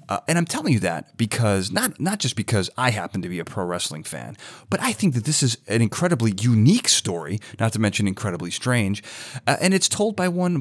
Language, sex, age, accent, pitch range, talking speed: English, male, 30-49, American, 105-140 Hz, 225 wpm